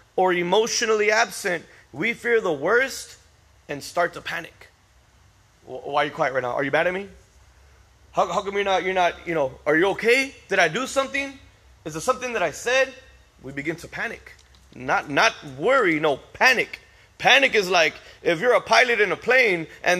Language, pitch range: English, 170-245 Hz